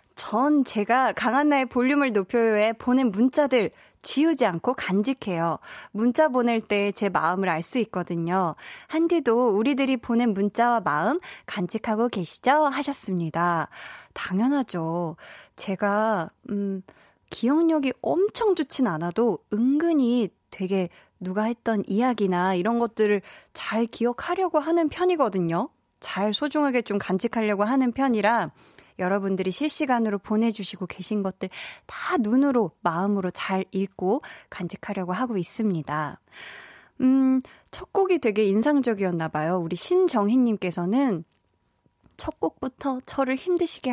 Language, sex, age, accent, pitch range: Korean, female, 20-39, native, 190-260 Hz